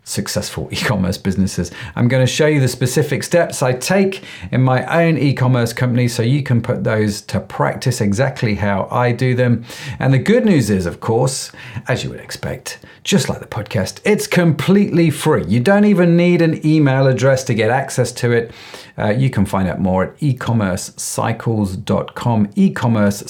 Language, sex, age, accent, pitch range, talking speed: English, male, 40-59, British, 115-155 Hz, 180 wpm